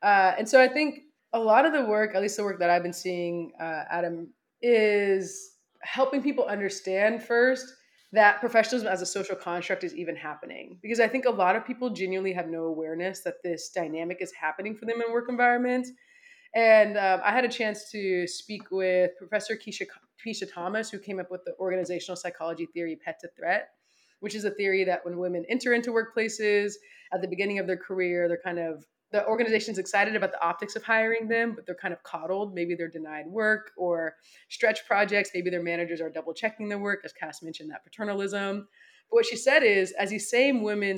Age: 20-39